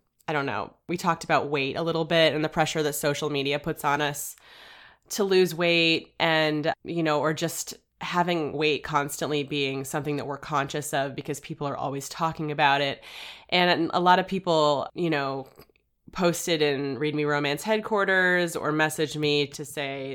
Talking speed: 180 wpm